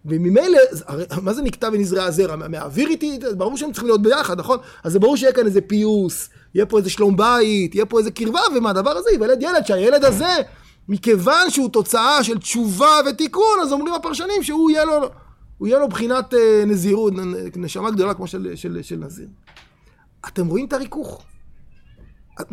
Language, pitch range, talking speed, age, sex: Hebrew, 205-295 Hz, 175 wpm, 30-49, male